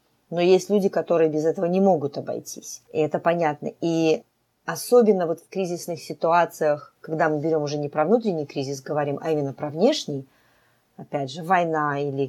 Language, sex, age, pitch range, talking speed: Russian, female, 30-49, 150-185 Hz, 170 wpm